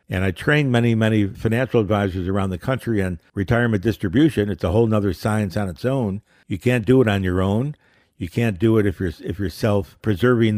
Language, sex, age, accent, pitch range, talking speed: English, male, 60-79, American, 100-125 Hz, 205 wpm